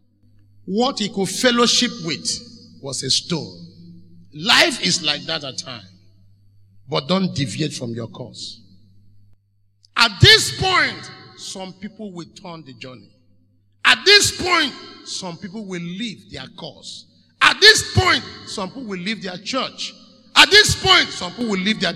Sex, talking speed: male, 150 wpm